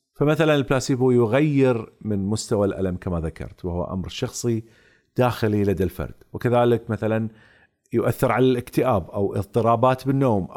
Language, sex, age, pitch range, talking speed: Arabic, male, 40-59, 105-145 Hz, 125 wpm